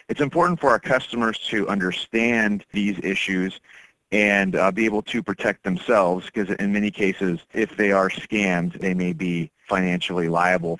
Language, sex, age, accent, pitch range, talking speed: English, male, 30-49, American, 95-115 Hz, 160 wpm